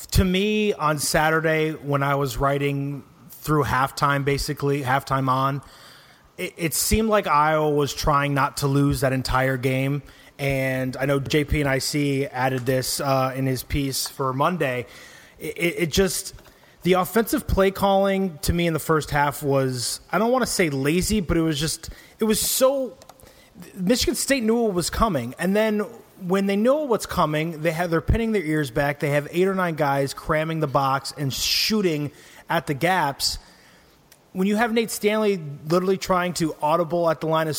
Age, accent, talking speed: 30-49, American, 185 wpm